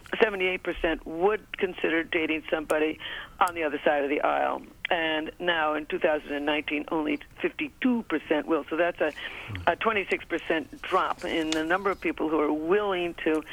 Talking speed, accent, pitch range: 145 wpm, American, 160-200 Hz